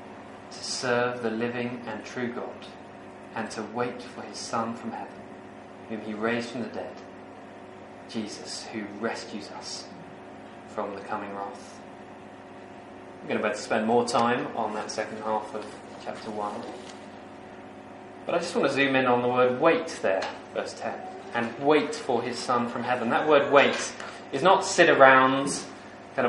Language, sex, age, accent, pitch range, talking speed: English, male, 20-39, British, 115-135 Hz, 165 wpm